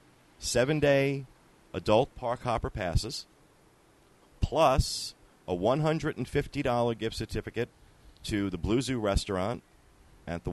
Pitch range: 90-115 Hz